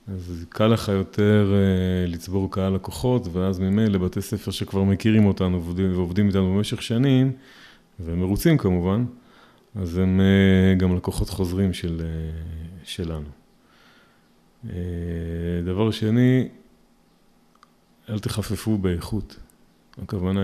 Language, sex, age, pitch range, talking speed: Hebrew, male, 30-49, 90-110 Hz, 95 wpm